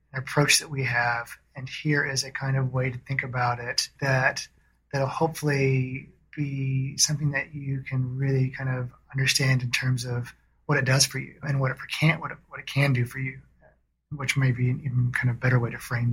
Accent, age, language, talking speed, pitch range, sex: American, 30-49, English, 215 wpm, 125-140 Hz, male